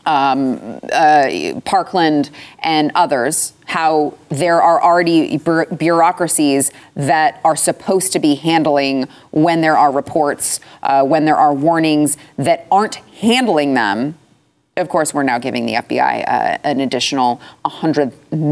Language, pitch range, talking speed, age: English, 140-165 Hz, 130 wpm, 30-49